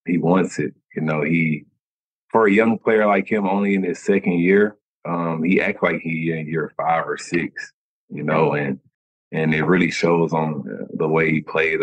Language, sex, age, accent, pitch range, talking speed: English, male, 30-49, American, 75-85 Hz, 195 wpm